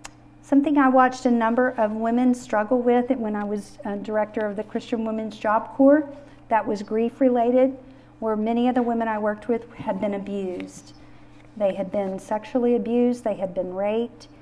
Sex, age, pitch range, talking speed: female, 50-69, 180-230 Hz, 180 wpm